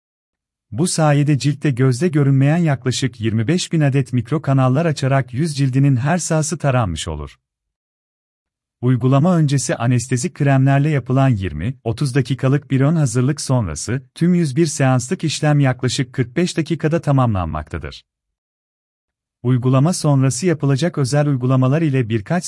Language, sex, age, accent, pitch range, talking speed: Turkish, male, 40-59, native, 115-150 Hz, 120 wpm